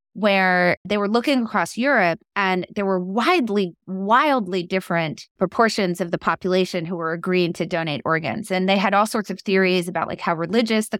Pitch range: 170-205 Hz